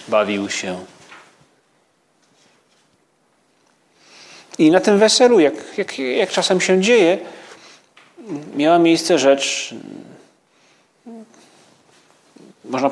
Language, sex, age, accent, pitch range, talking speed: Polish, male, 40-59, native, 130-170 Hz, 70 wpm